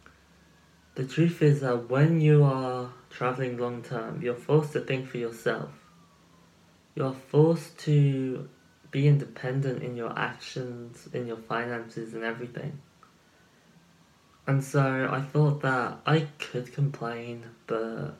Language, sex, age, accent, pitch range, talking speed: English, male, 20-39, British, 120-145 Hz, 125 wpm